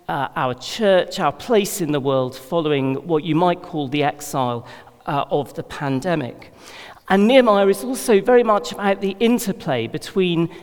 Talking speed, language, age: 165 wpm, English, 40-59